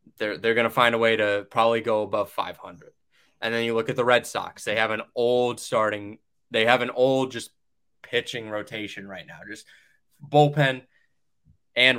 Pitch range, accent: 110-135 Hz, American